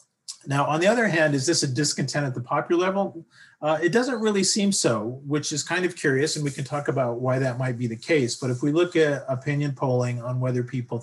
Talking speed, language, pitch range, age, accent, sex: 245 wpm, English, 120-150 Hz, 40-59, American, male